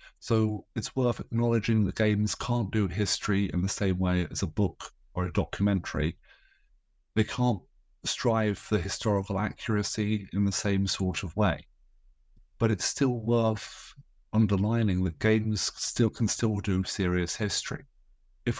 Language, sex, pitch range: English, male, 95-110 Hz